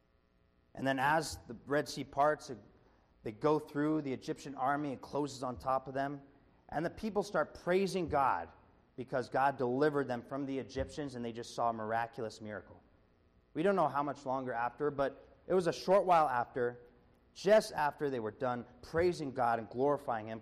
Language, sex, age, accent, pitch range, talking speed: English, male, 30-49, American, 110-145 Hz, 185 wpm